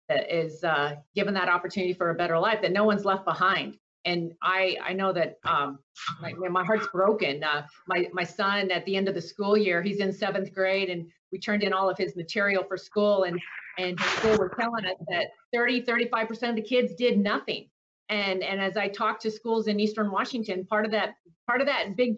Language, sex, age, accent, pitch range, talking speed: English, female, 30-49, American, 185-225 Hz, 225 wpm